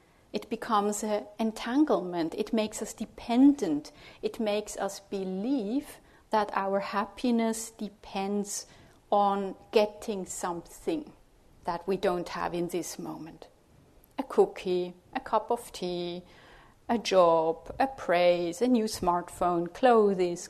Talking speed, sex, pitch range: 115 wpm, female, 190-245 Hz